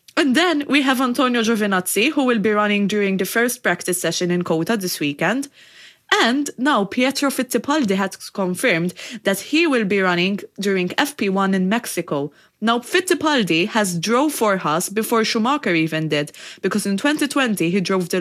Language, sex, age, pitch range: English, female, 20-39, 185-255 Hz